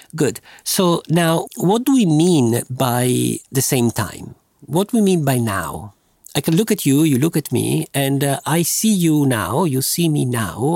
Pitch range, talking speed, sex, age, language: 120-165 Hz, 200 wpm, male, 50-69, English